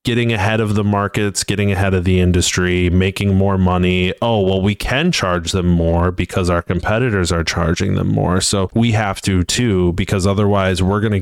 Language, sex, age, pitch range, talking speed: English, male, 30-49, 90-105 Hz, 200 wpm